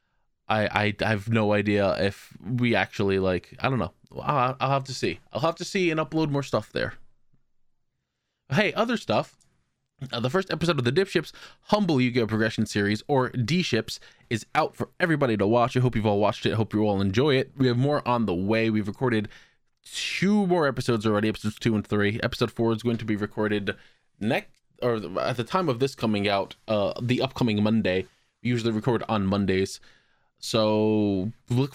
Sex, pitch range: male, 105-130 Hz